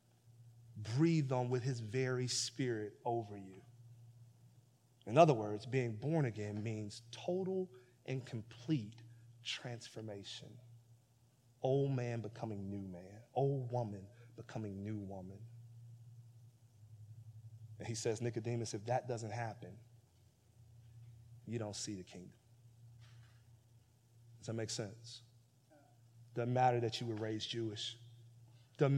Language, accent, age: English, American, 30-49